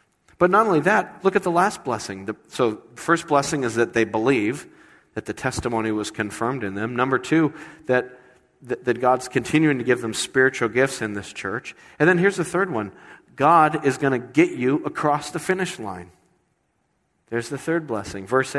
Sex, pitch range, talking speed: male, 110-155 Hz, 190 wpm